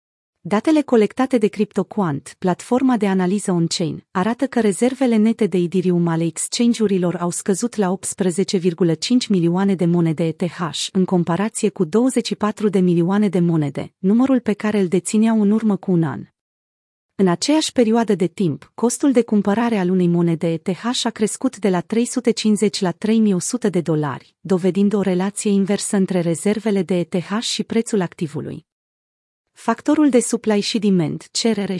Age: 30-49